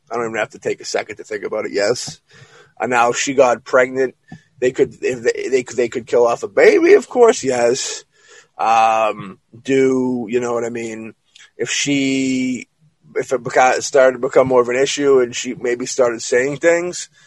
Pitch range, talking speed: 125-160 Hz, 200 wpm